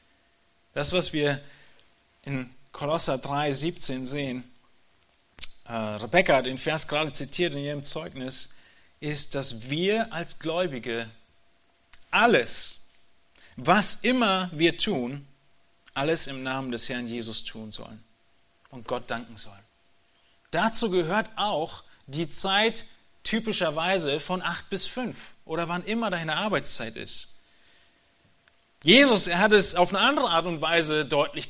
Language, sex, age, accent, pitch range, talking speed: German, male, 30-49, German, 145-215 Hz, 125 wpm